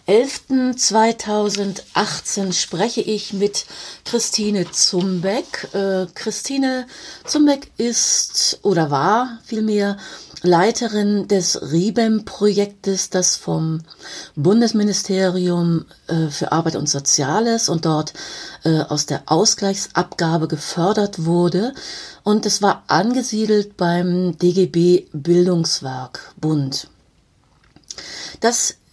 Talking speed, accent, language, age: 80 wpm, German, German, 30-49